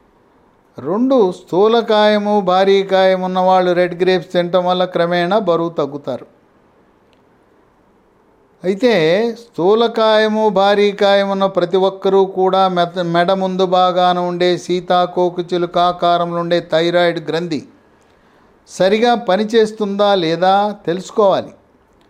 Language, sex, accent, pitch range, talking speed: English, male, Indian, 175-190 Hz, 80 wpm